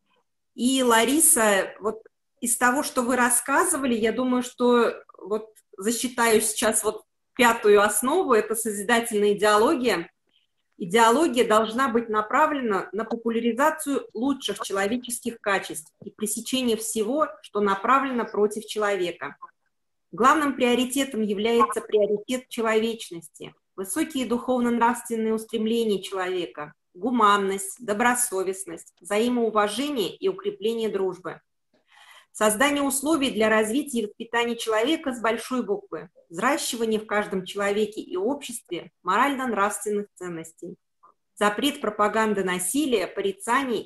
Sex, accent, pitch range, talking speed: female, native, 205-250 Hz, 100 wpm